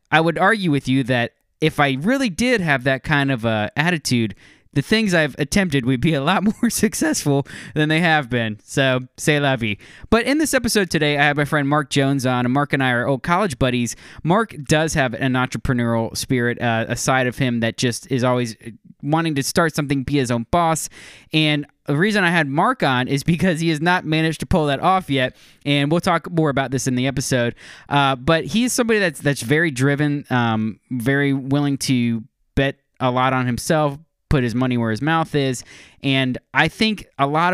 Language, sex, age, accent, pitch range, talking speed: English, male, 20-39, American, 125-155 Hz, 215 wpm